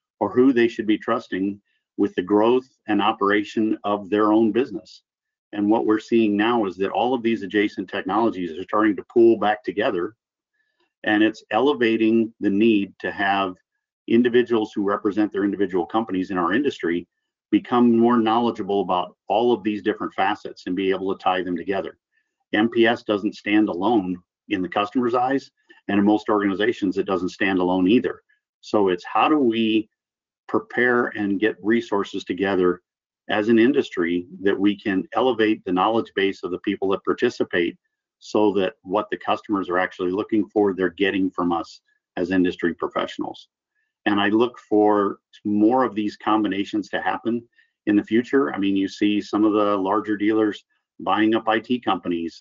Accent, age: American, 50-69